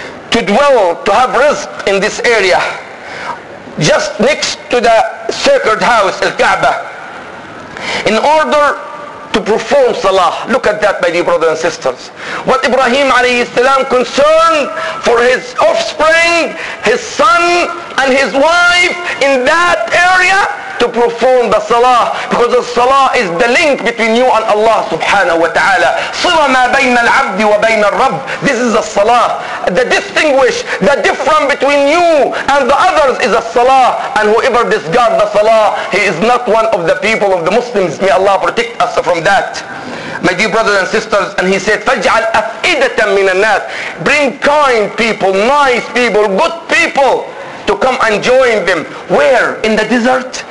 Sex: male